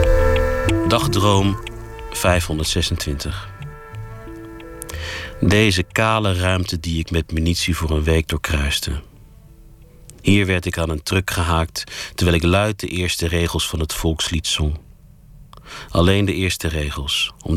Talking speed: 120 wpm